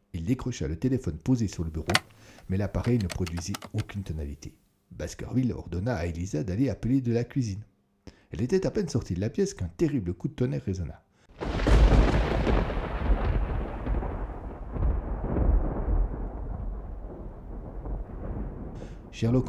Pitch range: 90-130 Hz